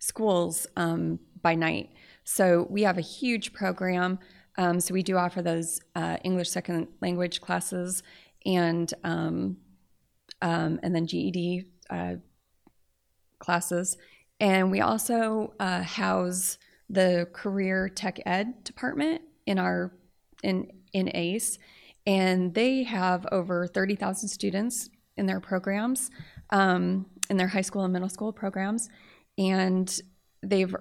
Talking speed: 125 wpm